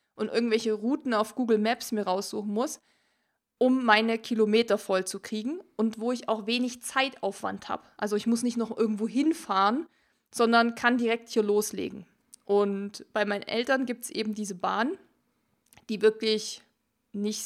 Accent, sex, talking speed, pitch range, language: German, female, 160 wpm, 210-240 Hz, German